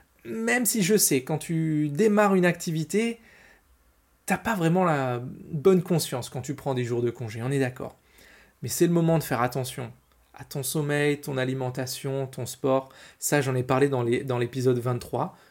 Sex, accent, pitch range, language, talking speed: male, French, 135-175 Hz, French, 185 wpm